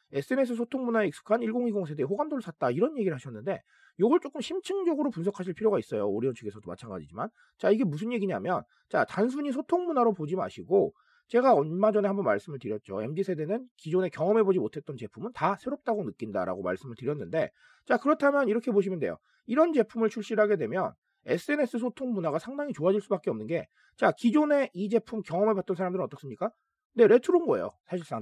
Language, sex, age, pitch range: Korean, male, 30-49, 185-265 Hz